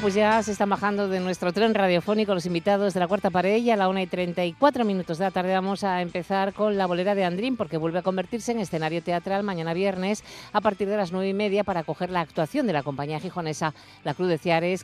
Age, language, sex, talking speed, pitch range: 50-69, Spanish, female, 255 wpm, 155-200 Hz